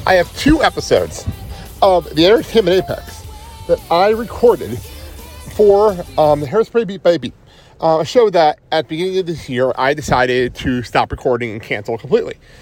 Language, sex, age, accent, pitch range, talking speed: English, male, 40-59, American, 130-180 Hz, 170 wpm